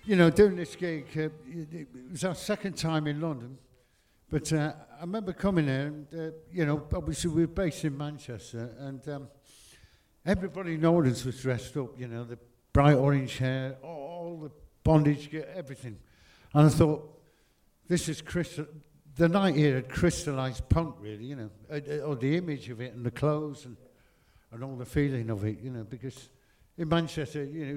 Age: 60-79